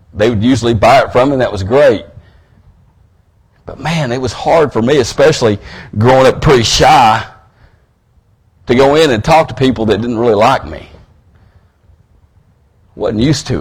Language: English